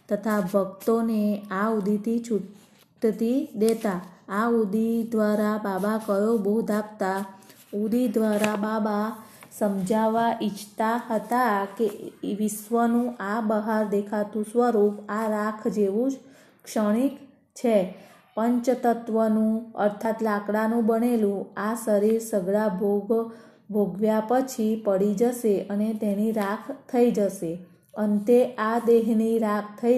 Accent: native